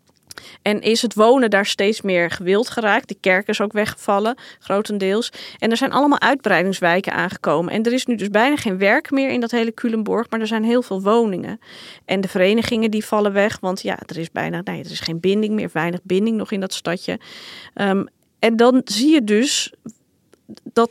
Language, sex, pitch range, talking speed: Dutch, female, 205-250 Hz, 190 wpm